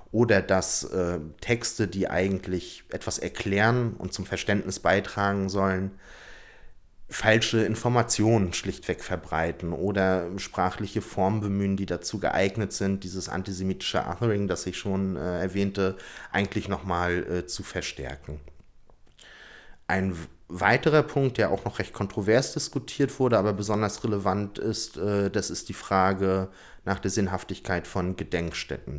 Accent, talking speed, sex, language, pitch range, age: German, 125 wpm, male, German, 90-100 Hz, 30-49